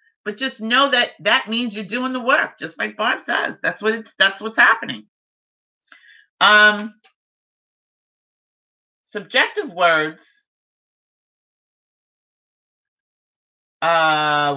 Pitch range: 170-230 Hz